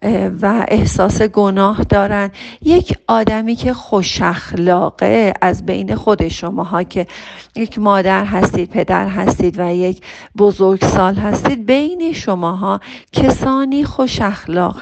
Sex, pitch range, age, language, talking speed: female, 185-225 Hz, 40-59, Persian, 110 wpm